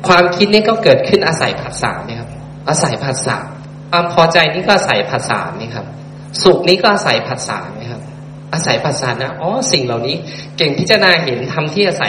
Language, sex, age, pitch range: Thai, male, 20-39, 130-160 Hz